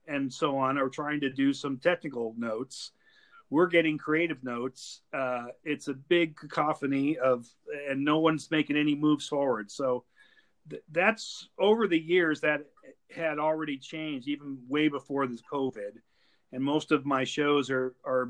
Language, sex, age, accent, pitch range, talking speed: English, male, 40-59, American, 130-150 Hz, 155 wpm